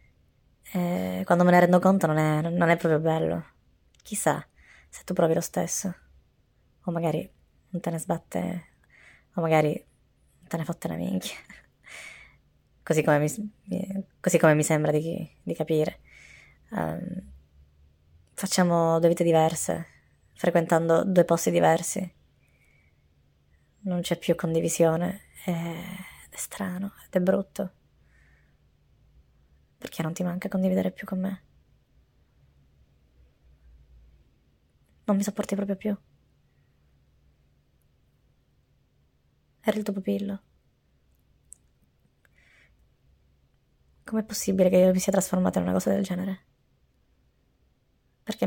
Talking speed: 105 wpm